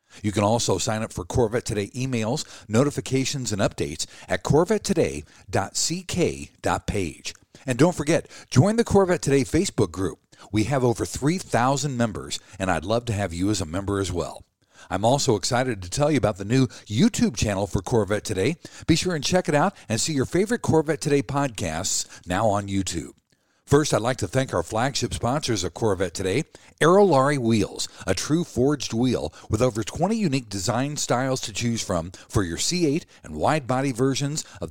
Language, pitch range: English, 105-145 Hz